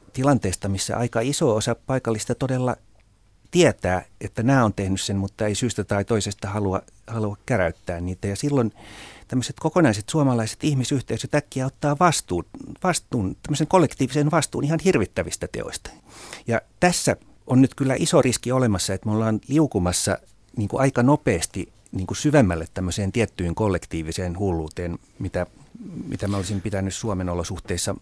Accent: native